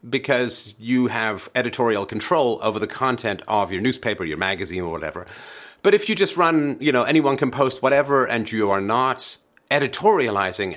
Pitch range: 105-135 Hz